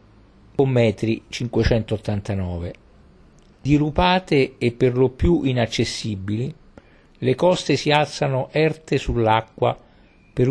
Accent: native